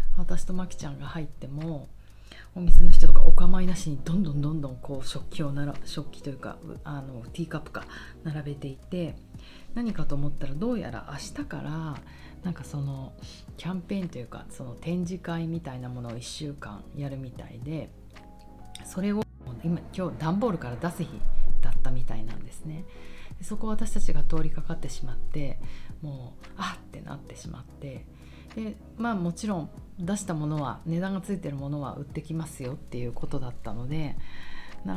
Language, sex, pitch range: Japanese, female, 125-170 Hz